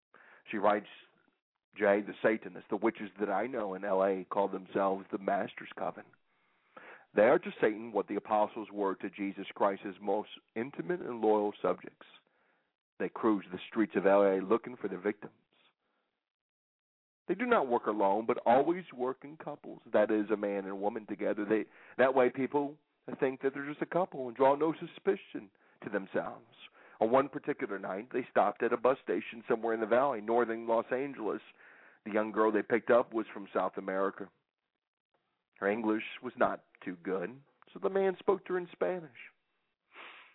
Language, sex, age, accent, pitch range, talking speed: English, male, 40-59, American, 100-135 Hz, 175 wpm